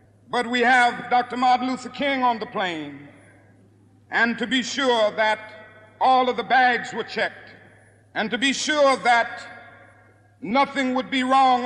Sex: male